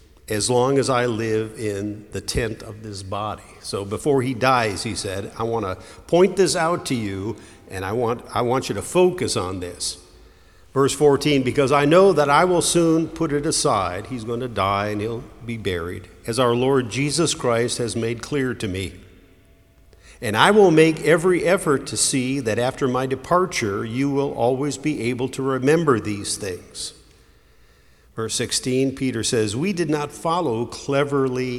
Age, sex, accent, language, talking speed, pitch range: 50-69, male, American, English, 180 wpm, 105-140 Hz